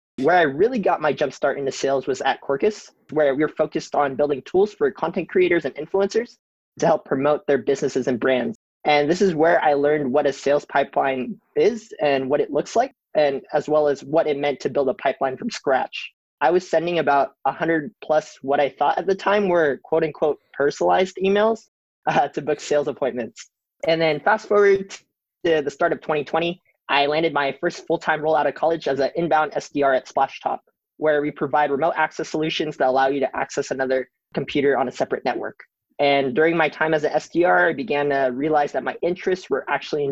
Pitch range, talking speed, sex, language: 140-175 Hz, 205 wpm, male, English